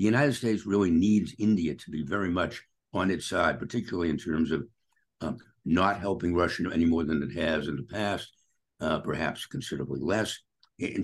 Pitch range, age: 85-115 Hz, 60-79